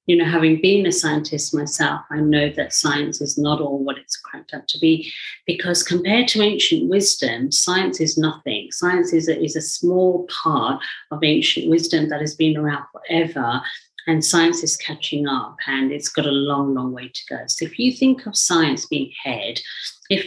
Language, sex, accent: English, female, British